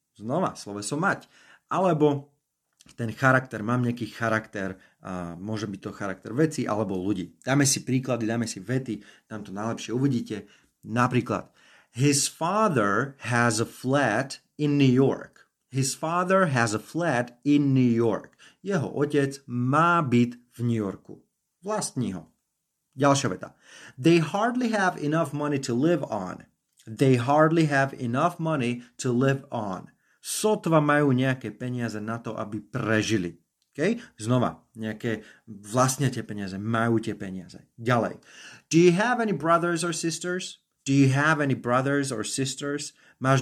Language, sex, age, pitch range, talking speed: Slovak, male, 30-49, 110-145 Hz, 145 wpm